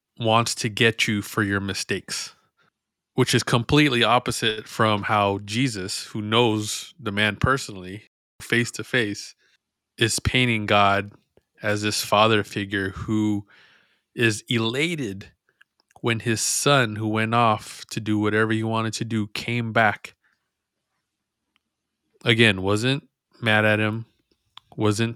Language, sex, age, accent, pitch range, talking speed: English, male, 20-39, American, 105-120 Hz, 125 wpm